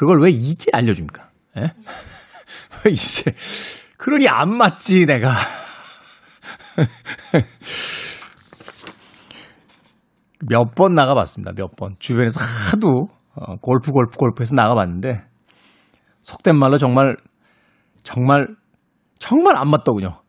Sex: male